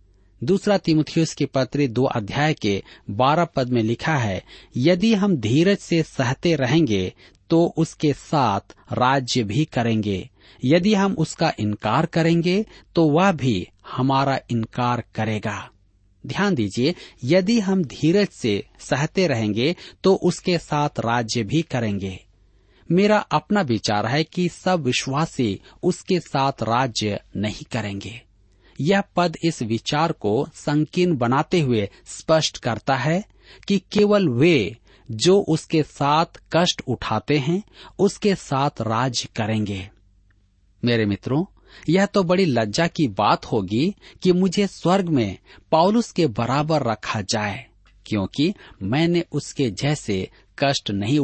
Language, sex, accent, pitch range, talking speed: Hindi, male, native, 110-170 Hz, 130 wpm